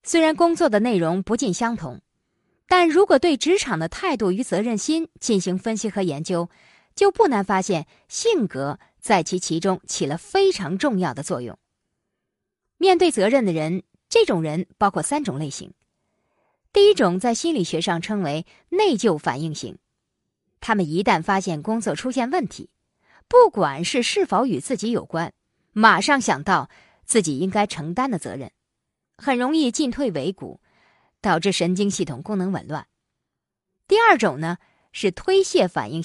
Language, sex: Chinese, female